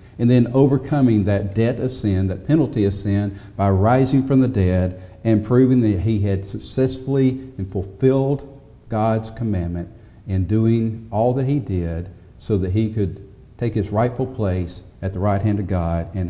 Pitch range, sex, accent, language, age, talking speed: 95-120 Hz, male, American, English, 50-69, 175 wpm